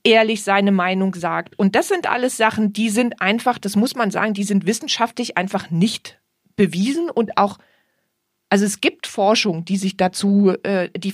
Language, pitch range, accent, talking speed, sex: English, 190-235 Hz, German, 170 wpm, female